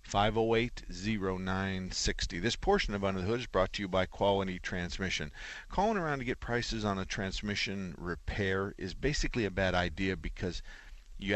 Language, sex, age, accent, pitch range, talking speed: English, male, 50-69, American, 90-110 Hz, 185 wpm